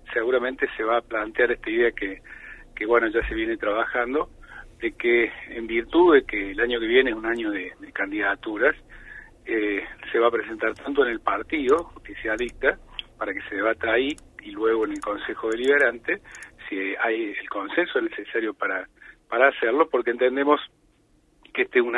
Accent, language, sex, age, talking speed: Argentinian, Spanish, male, 40-59, 175 wpm